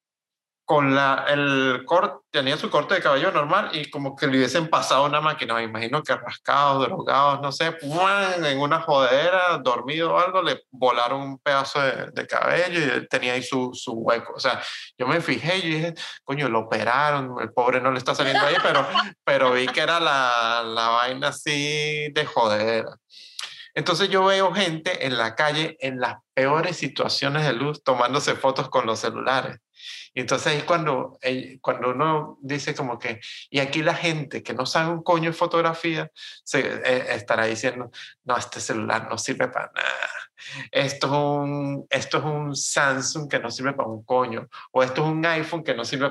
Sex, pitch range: male, 125-155 Hz